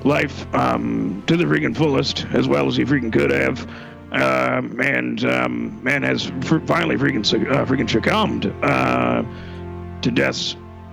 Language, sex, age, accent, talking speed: English, male, 40-59, American, 155 wpm